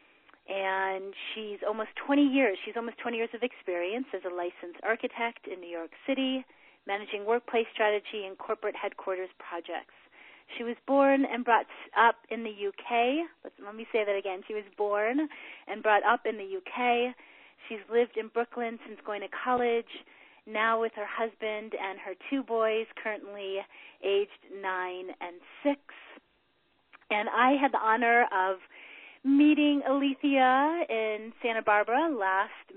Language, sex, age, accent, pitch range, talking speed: English, female, 30-49, American, 200-240 Hz, 150 wpm